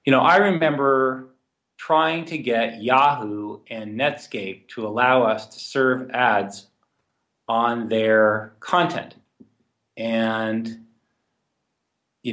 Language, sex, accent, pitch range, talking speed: English, male, American, 100-125 Hz, 100 wpm